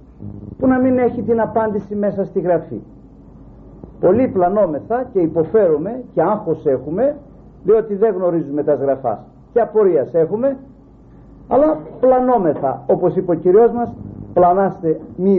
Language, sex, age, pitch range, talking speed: Greek, male, 50-69, 155-230 Hz, 130 wpm